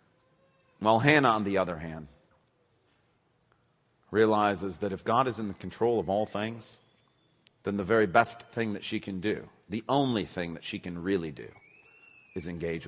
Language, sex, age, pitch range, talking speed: English, male, 40-59, 125-195 Hz, 170 wpm